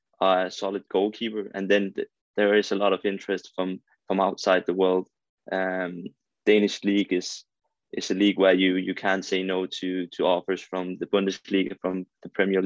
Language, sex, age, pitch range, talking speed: English, male, 20-39, 95-100 Hz, 185 wpm